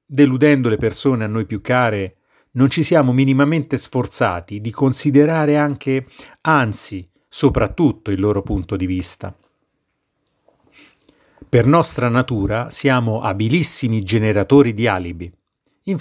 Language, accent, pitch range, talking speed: Italian, native, 100-130 Hz, 115 wpm